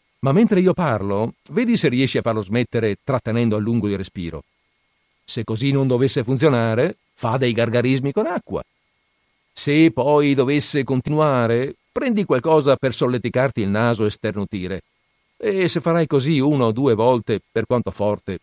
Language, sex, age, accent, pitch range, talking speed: Italian, male, 50-69, native, 95-130 Hz, 155 wpm